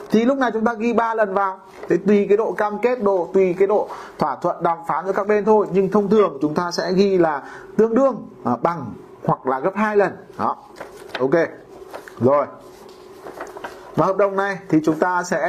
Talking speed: 215 wpm